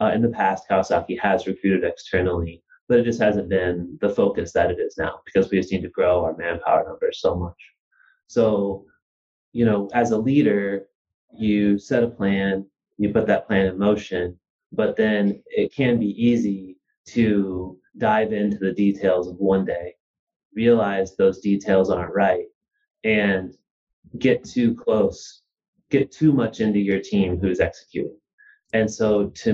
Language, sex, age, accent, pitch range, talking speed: English, male, 30-49, American, 95-125 Hz, 165 wpm